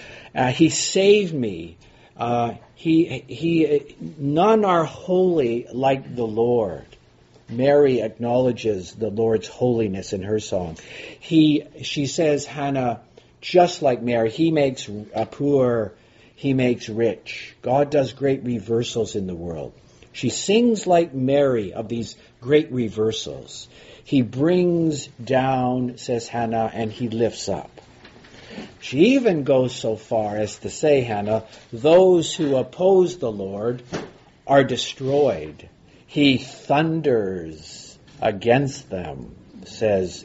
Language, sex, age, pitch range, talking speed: English, male, 50-69, 115-150 Hz, 120 wpm